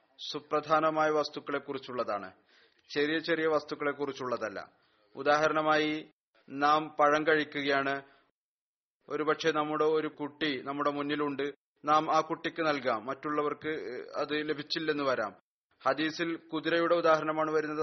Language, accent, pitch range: Malayalam, native, 150-165 Hz